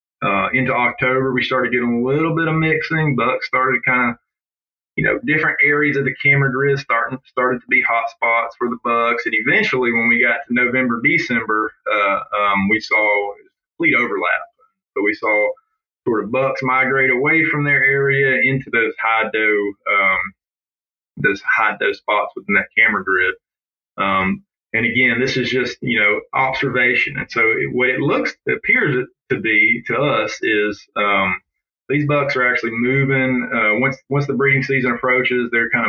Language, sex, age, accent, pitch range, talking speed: English, male, 20-39, American, 115-140 Hz, 180 wpm